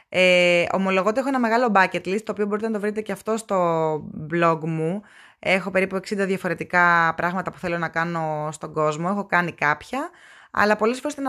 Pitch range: 170-210 Hz